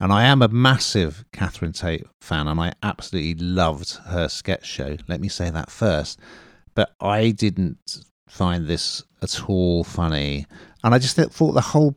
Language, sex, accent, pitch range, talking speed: English, male, British, 85-110 Hz, 170 wpm